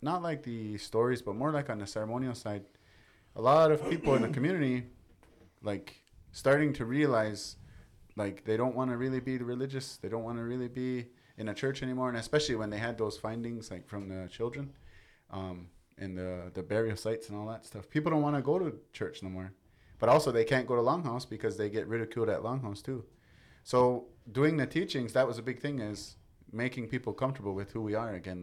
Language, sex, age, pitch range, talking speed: English, male, 20-39, 100-125 Hz, 215 wpm